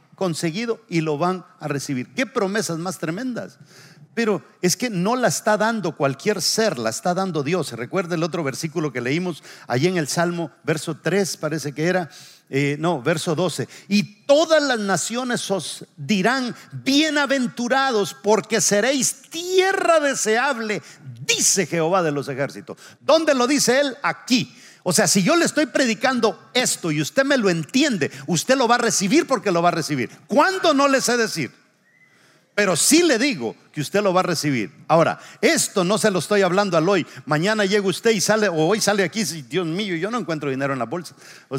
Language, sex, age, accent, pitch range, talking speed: English, male, 50-69, Mexican, 160-225 Hz, 190 wpm